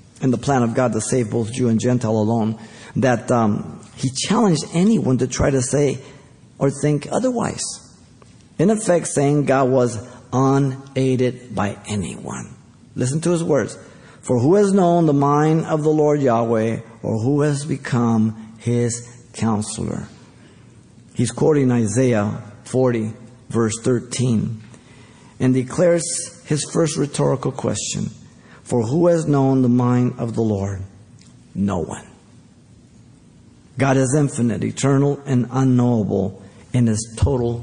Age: 50-69